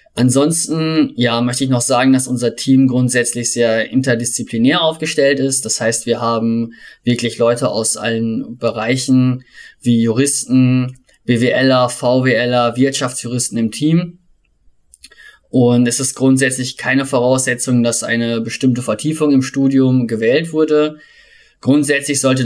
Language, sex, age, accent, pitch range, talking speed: German, male, 20-39, German, 115-135 Hz, 120 wpm